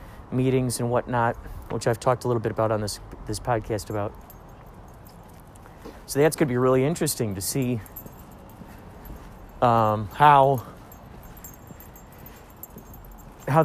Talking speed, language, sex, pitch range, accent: 120 wpm, English, male, 105-135 Hz, American